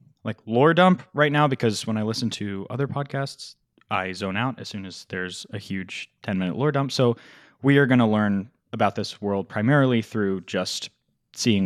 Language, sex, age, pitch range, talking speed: English, male, 20-39, 95-125 Hz, 190 wpm